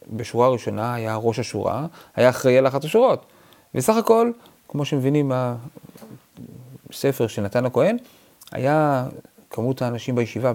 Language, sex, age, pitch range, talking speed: Hebrew, male, 30-49, 120-175 Hz, 120 wpm